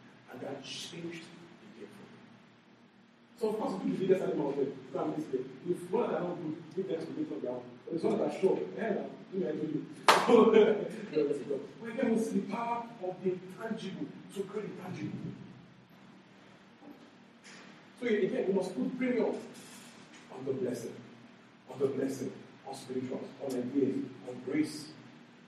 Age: 40-59